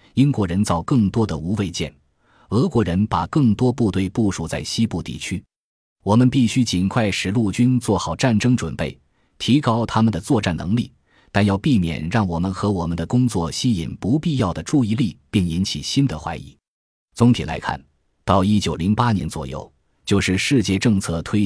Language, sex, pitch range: Chinese, male, 85-115 Hz